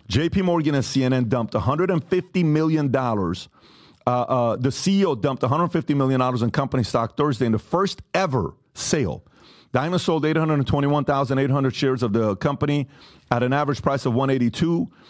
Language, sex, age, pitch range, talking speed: English, male, 40-59, 115-150 Hz, 150 wpm